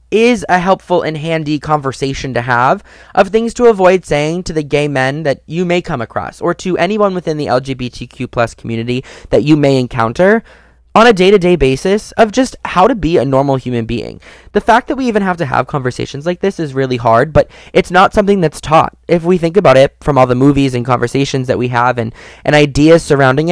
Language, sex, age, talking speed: English, male, 20-39, 215 wpm